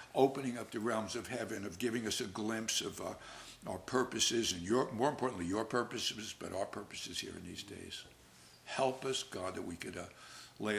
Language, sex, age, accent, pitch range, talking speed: English, male, 60-79, American, 90-110 Hz, 200 wpm